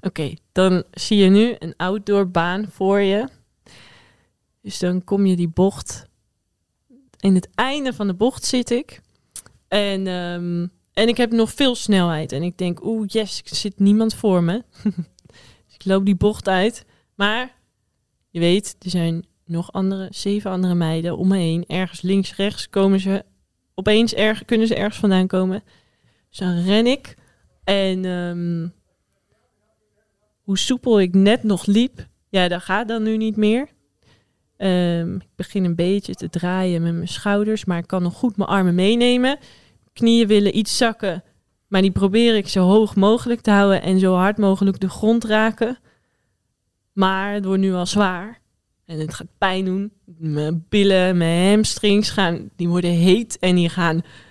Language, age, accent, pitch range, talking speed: Dutch, 20-39, Dutch, 180-215 Hz, 160 wpm